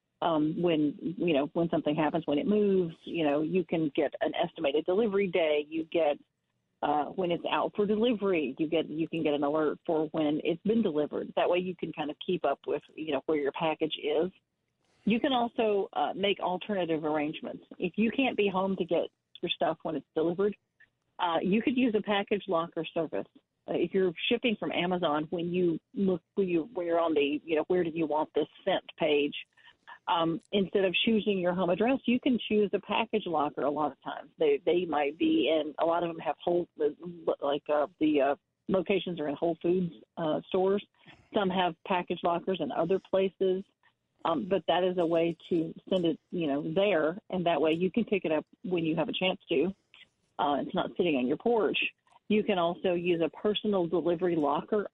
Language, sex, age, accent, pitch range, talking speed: English, female, 40-59, American, 160-205 Hz, 210 wpm